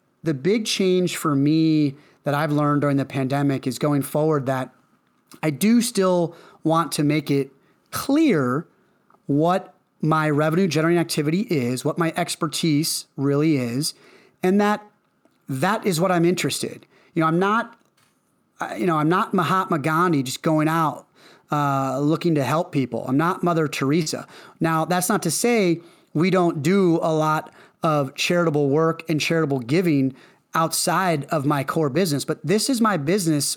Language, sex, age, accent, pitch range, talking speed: English, male, 30-49, American, 145-180 Hz, 160 wpm